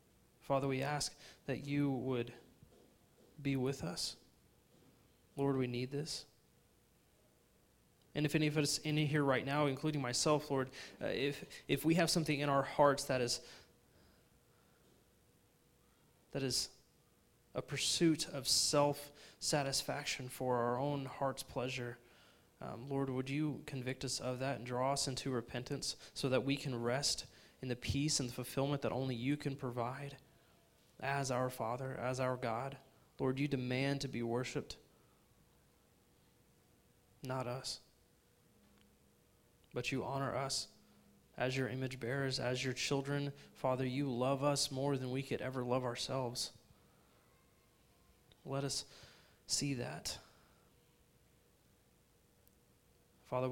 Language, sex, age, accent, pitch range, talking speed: English, male, 20-39, American, 125-140 Hz, 130 wpm